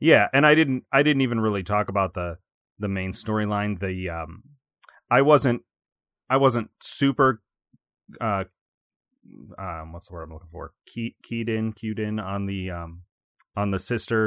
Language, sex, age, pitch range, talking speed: English, male, 30-49, 95-130 Hz, 170 wpm